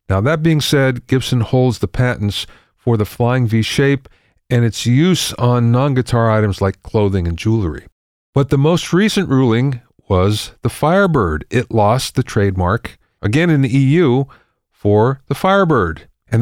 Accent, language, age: American, English, 50-69